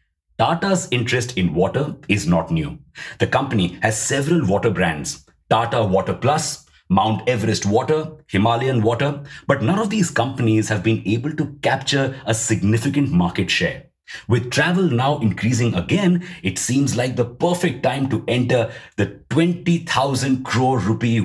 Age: 50-69